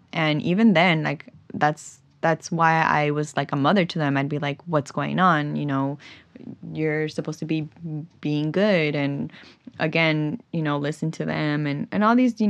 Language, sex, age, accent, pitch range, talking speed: English, female, 10-29, American, 145-175 Hz, 190 wpm